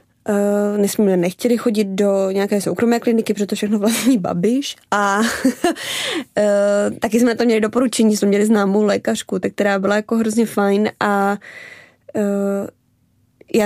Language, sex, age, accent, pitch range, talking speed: Czech, female, 20-39, native, 200-230 Hz, 155 wpm